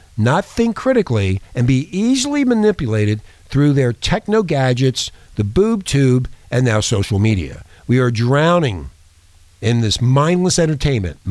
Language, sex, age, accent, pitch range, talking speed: English, male, 50-69, American, 110-150 Hz, 135 wpm